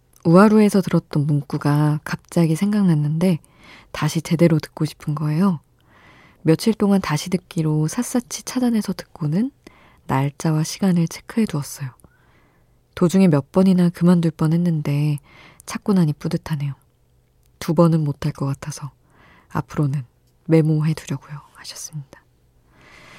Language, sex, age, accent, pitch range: Korean, female, 20-39, native, 140-175 Hz